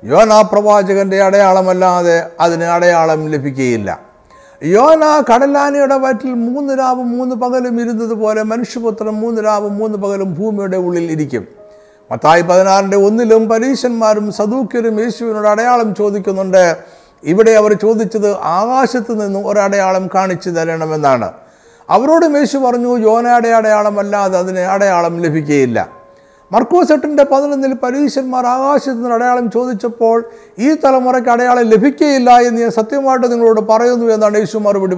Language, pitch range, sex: Malayalam, 195-245 Hz, male